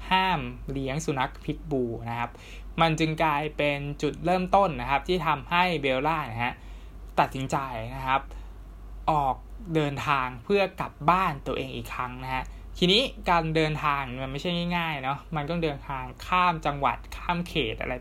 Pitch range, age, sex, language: 120-160 Hz, 20-39, male, Thai